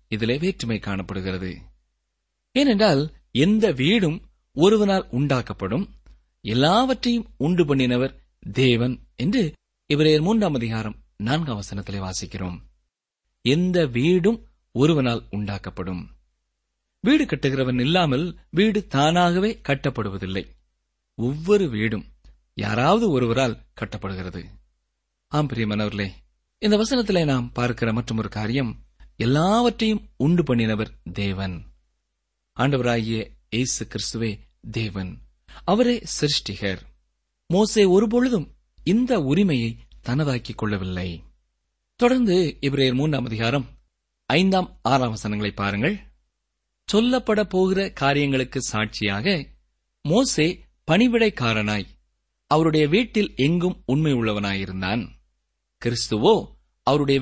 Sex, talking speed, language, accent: male, 80 wpm, Tamil, native